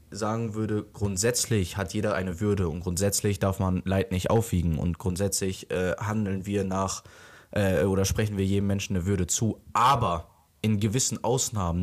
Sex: male